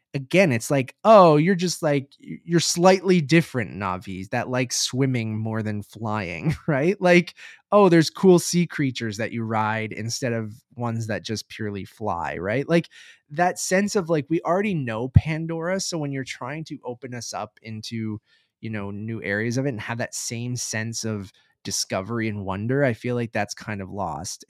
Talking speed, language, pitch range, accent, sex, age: 185 wpm, English, 110-145 Hz, American, male, 20-39